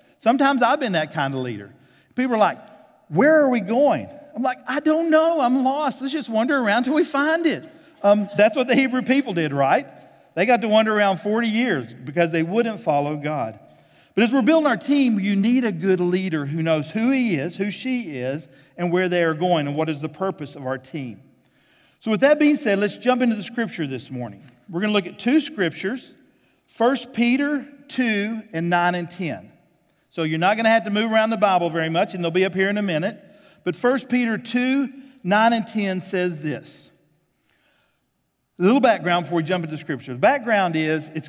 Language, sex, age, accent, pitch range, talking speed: English, male, 50-69, American, 155-230 Hz, 215 wpm